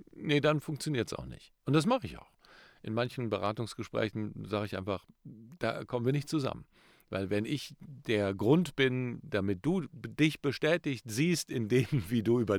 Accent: German